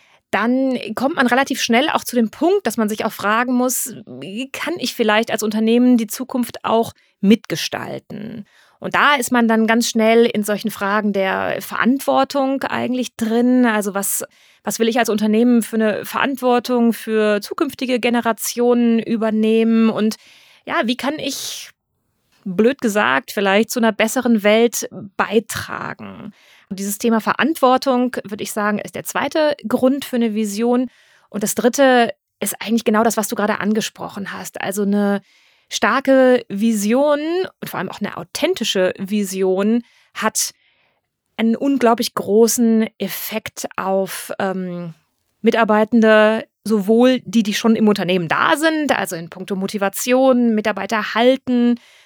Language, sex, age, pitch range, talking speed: German, female, 30-49, 210-250 Hz, 145 wpm